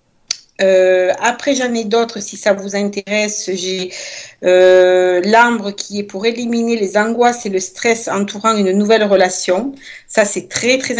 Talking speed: 160 wpm